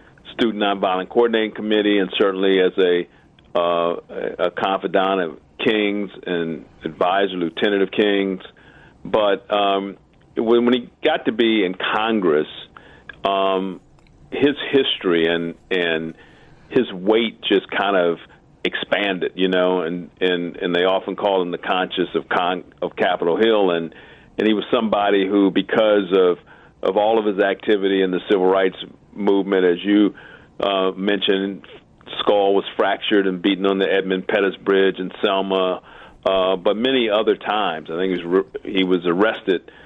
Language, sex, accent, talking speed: English, male, American, 155 wpm